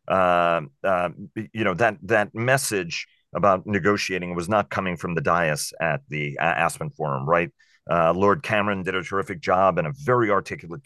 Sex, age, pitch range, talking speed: male, 40-59, 80-100 Hz, 175 wpm